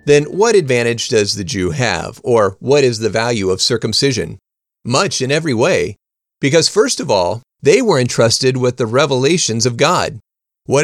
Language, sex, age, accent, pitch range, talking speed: English, male, 40-59, American, 120-165 Hz, 170 wpm